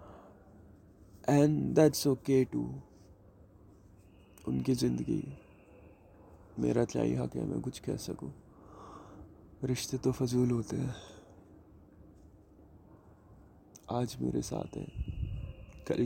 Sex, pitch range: male, 90-125 Hz